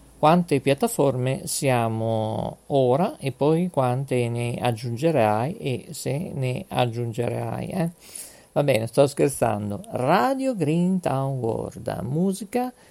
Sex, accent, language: male, native, Italian